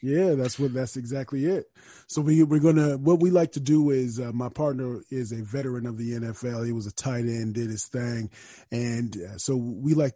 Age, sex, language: 30-49, male, English